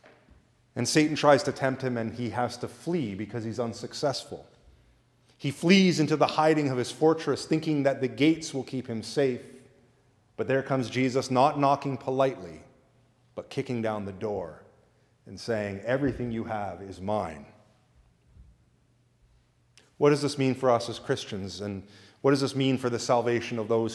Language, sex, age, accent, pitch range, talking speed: English, male, 30-49, American, 115-140 Hz, 170 wpm